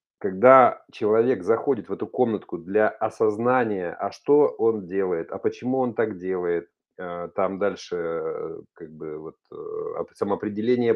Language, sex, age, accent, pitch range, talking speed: Russian, male, 30-49, native, 110-165 Hz, 110 wpm